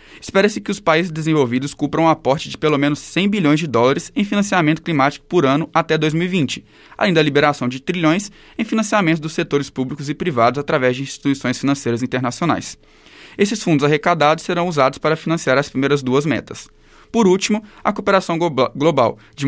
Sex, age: male, 20-39